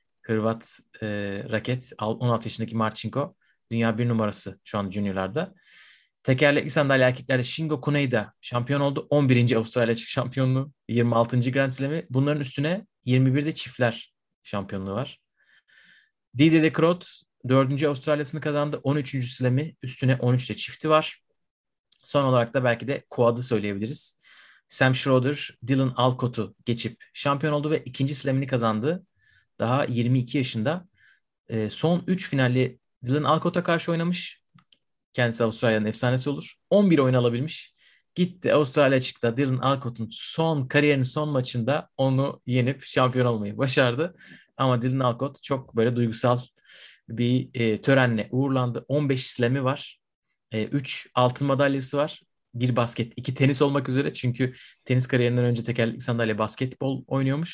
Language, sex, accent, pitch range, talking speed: Turkish, male, native, 120-145 Hz, 130 wpm